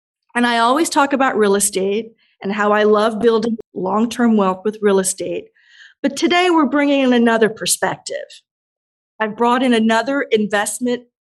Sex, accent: female, American